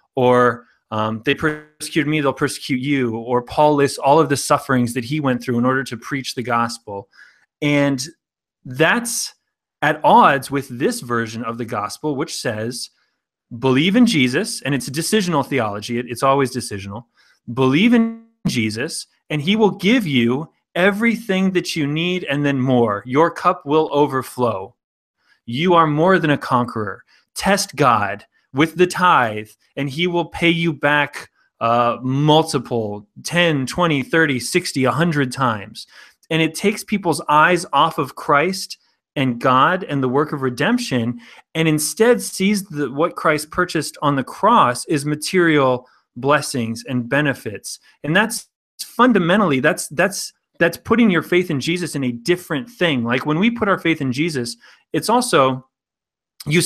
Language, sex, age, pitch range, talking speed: English, male, 30-49, 125-170 Hz, 155 wpm